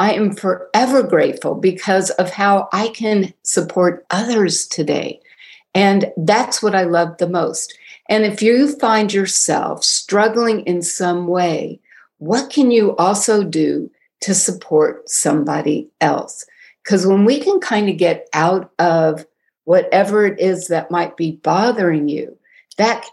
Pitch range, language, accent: 170-215 Hz, English, American